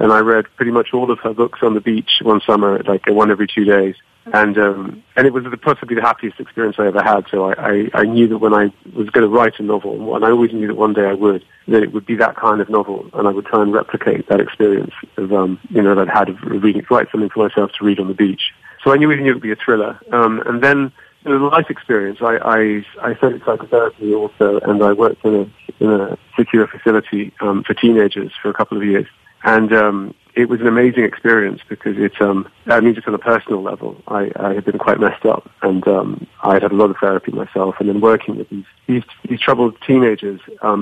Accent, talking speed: British, 255 wpm